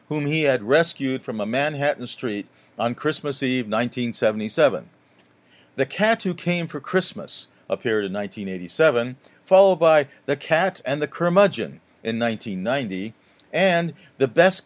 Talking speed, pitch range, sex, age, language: 135 wpm, 120-165 Hz, male, 50-69, English